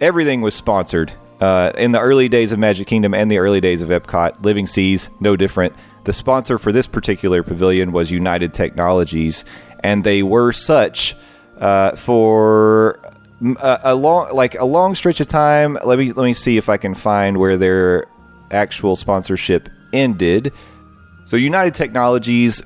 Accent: American